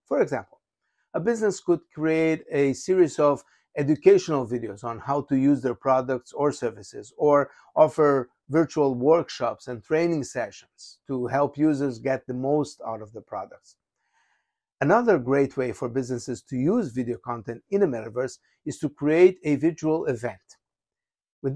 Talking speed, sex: 155 wpm, male